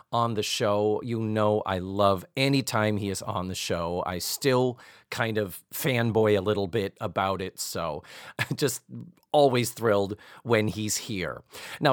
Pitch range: 110-160 Hz